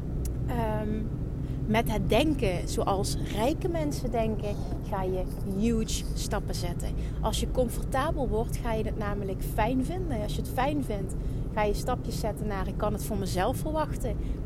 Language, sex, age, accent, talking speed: Dutch, female, 30-49, Dutch, 160 wpm